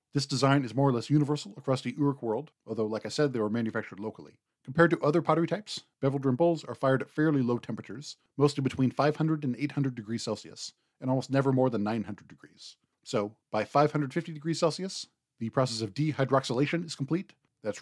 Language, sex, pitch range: English, male, 115-145 Hz